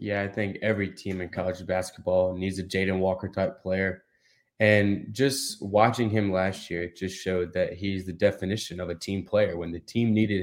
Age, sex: 20-39, male